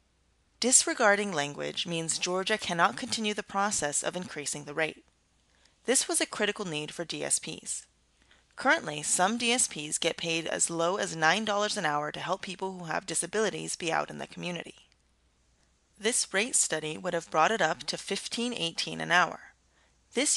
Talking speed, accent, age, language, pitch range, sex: 160 wpm, American, 30-49, English, 150-205 Hz, female